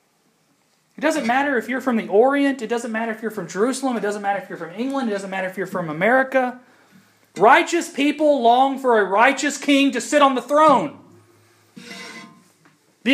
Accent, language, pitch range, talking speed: American, English, 175-245 Hz, 190 wpm